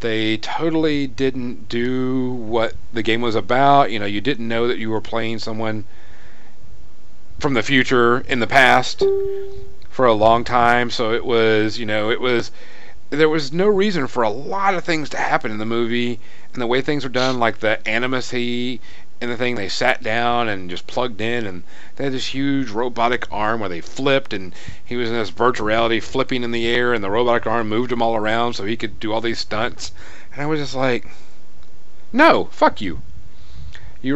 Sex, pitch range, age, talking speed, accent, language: male, 110-135 Hz, 40-59, 200 wpm, American, English